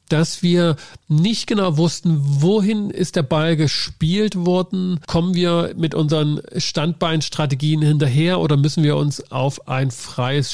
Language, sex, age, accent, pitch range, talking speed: German, male, 40-59, German, 125-160 Hz, 135 wpm